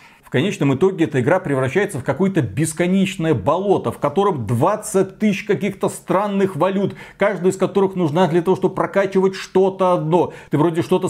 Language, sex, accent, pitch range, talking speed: Russian, male, native, 150-205 Hz, 160 wpm